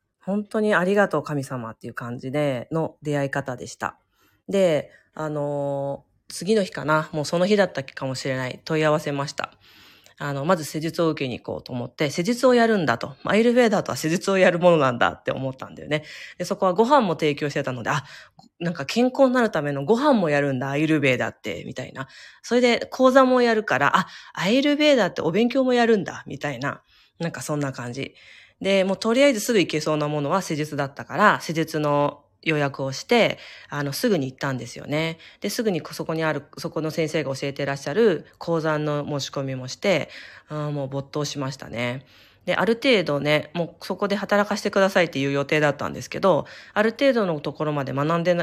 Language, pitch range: Japanese, 140-195 Hz